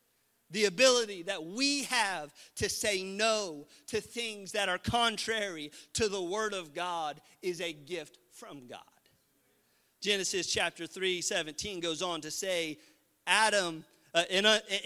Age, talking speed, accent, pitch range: 40-59, 135 wpm, American, 140-215 Hz